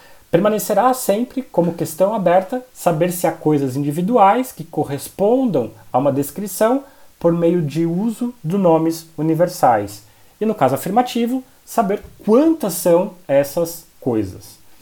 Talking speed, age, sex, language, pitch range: 125 wpm, 30-49, male, Portuguese, 140-195 Hz